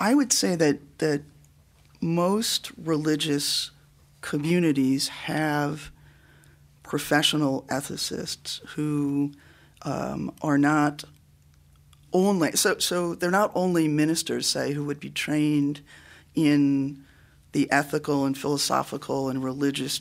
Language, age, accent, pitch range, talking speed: English, 40-59, American, 125-150 Hz, 100 wpm